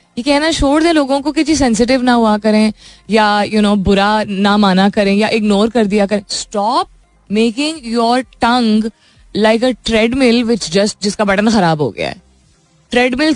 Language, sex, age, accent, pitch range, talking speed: Hindi, female, 20-39, native, 185-240 Hz, 130 wpm